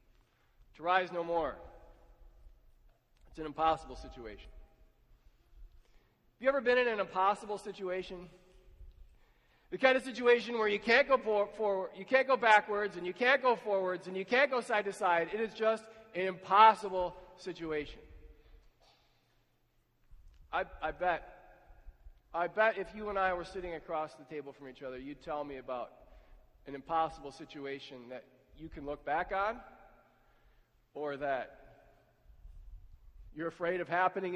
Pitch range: 155-210 Hz